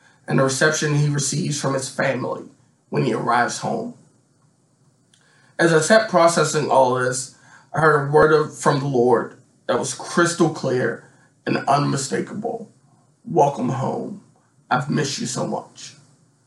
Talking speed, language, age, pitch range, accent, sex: 140 wpm, English, 20-39, 135-160 Hz, American, male